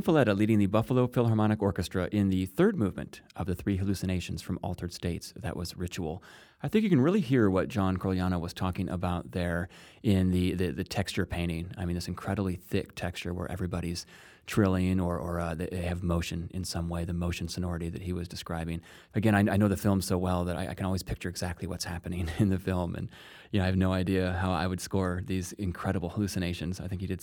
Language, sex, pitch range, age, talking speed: English, male, 90-100 Hz, 30-49, 225 wpm